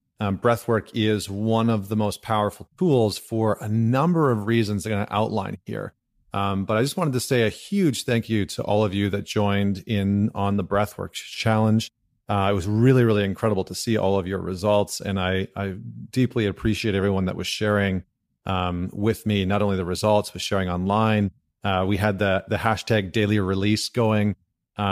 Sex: male